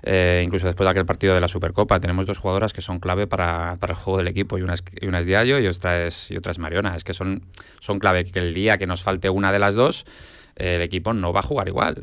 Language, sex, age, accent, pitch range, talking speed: Spanish, male, 20-39, Spanish, 90-105 Hz, 280 wpm